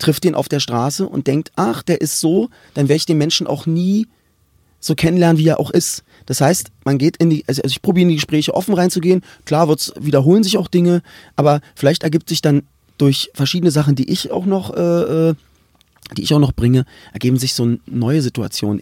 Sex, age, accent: male, 30-49, German